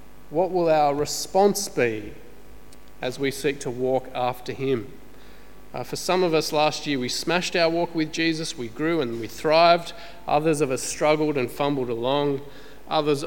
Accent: Australian